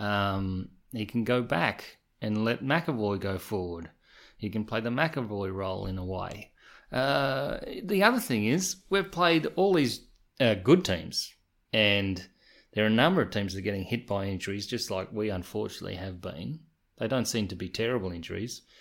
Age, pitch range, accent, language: 30-49, 100-130 Hz, Australian, English